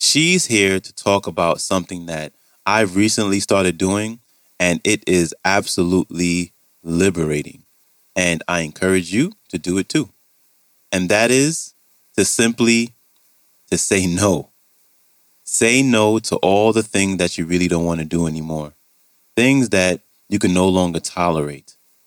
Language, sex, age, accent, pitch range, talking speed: English, male, 30-49, American, 80-105 Hz, 145 wpm